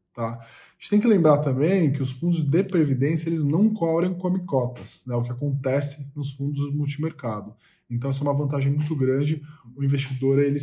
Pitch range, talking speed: 125-155 Hz, 205 wpm